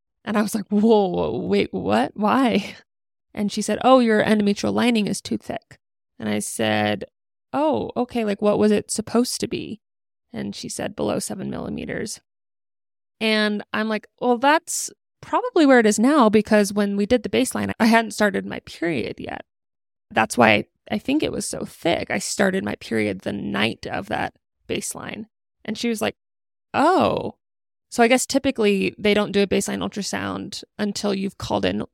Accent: American